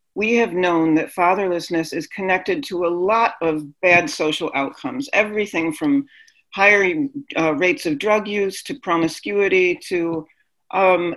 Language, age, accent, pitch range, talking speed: English, 40-59, American, 175-265 Hz, 140 wpm